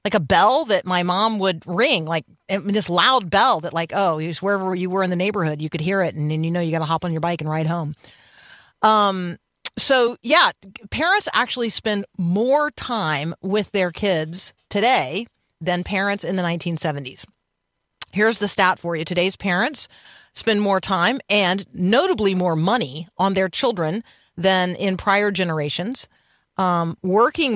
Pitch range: 170-210 Hz